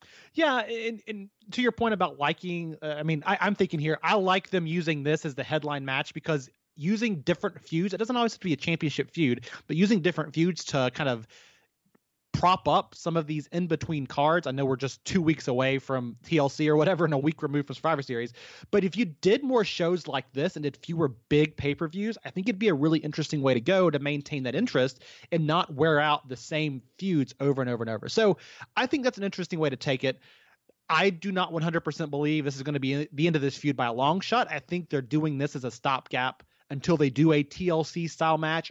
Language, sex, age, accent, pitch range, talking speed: English, male, 30-49, American, 145-190 Hz, 235 wpm